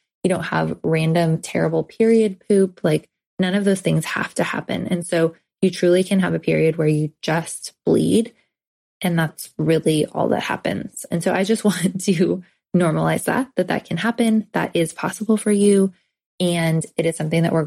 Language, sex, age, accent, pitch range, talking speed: English, female, 20-39, American, 165-200 Hz, 190 wpm